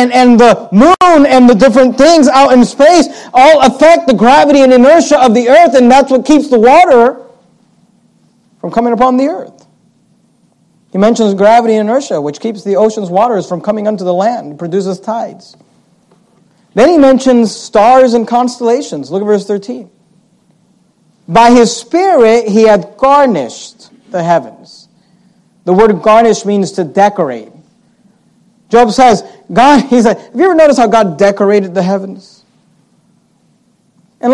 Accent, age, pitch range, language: American, 50-69, 190-245 Hz, English